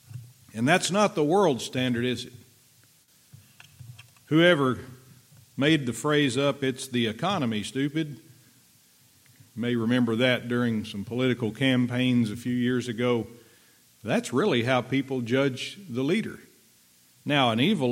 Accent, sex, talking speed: American, male, 125 wpm